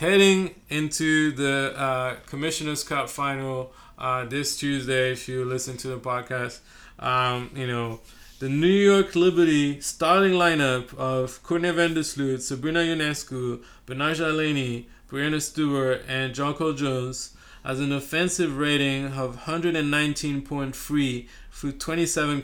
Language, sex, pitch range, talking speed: English, male, 130-160 Hz, 125 wpm